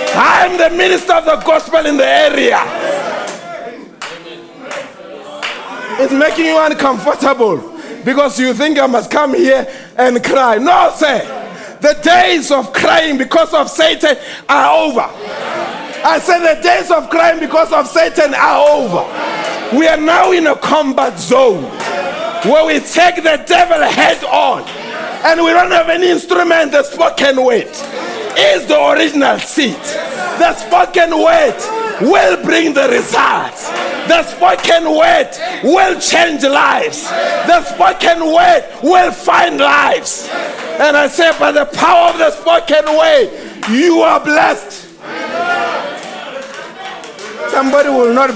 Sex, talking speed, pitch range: male, 130 wpm, 290-335 Hz